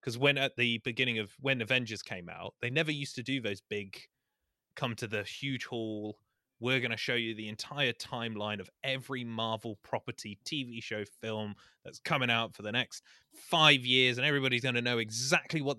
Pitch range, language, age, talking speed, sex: 110-135 Hz, English, 20-39, 200 wpm, male